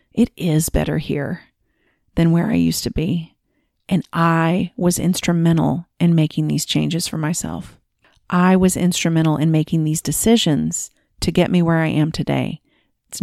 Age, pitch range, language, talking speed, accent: 40-59, 160-195 Hz, English, 160 wpm, American